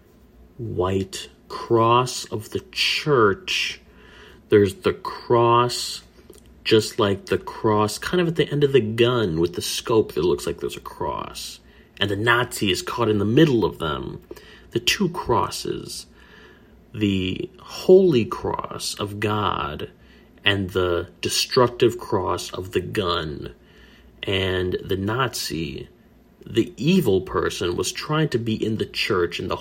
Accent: American